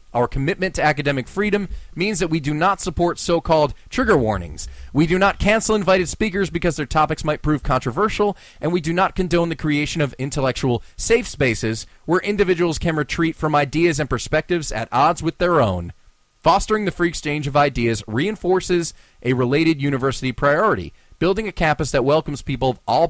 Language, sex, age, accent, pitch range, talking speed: English, male, 30-49, American, 120-175 Hz, 180 wpm